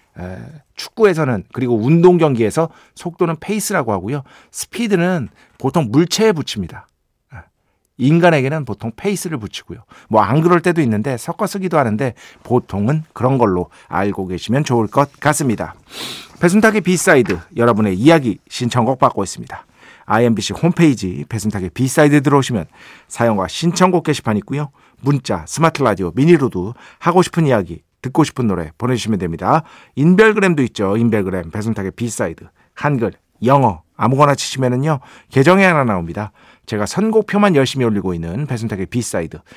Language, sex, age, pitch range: Korean, male, 50-69, 105-160 Hz